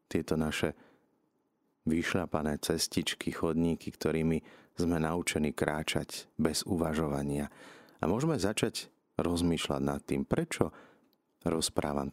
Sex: male